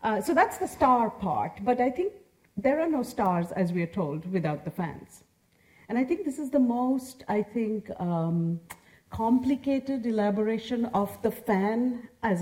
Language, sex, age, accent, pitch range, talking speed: English, female, 50-69, Indian, 180-250 Hz, 175 wpm